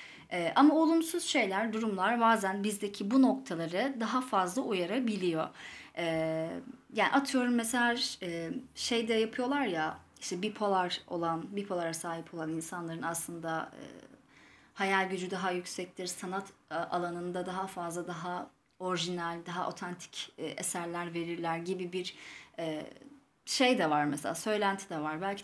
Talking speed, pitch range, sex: 130 wpm, 170-255 Hz, female